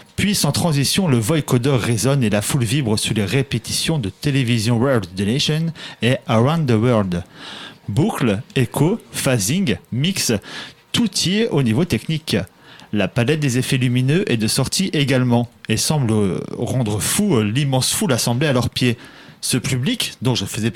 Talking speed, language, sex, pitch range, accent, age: 165 wpm, French, male, 115-160 Hz, French, 40-59